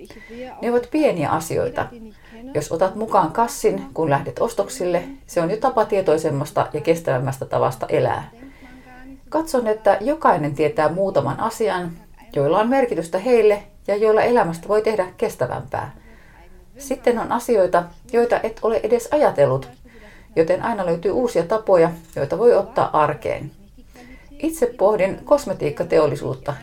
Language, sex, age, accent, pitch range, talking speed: Finnish, female, 30-49, native, 175-250 Hz, 125 wpm